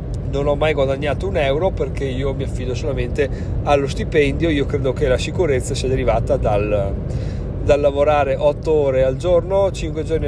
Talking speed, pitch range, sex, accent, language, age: 170 wpm, 130-165 Hz, male, native, Italian, 40-59